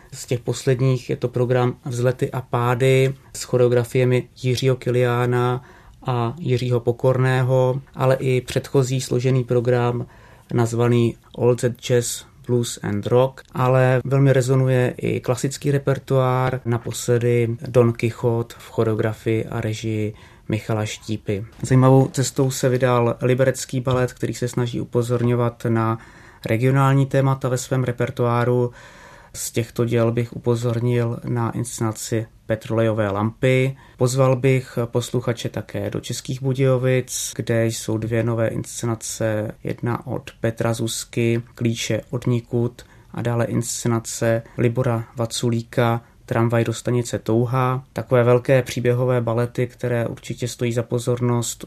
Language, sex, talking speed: Czech, male, 120 wpm